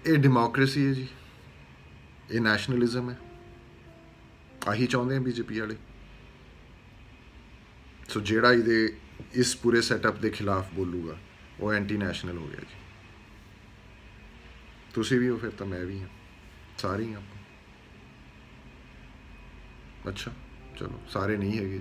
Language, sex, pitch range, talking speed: Punjabi, male, 90-115 Hz, 115 wpm